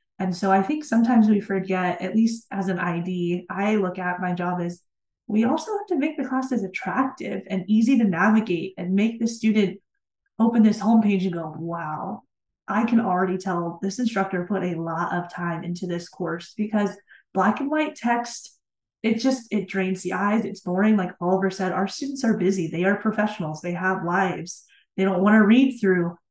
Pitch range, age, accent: 180-215 Hz, 20-39, American